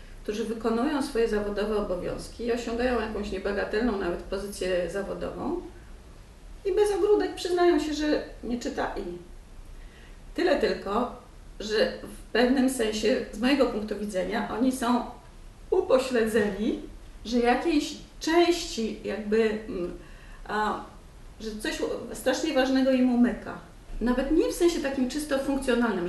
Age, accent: 40-59, native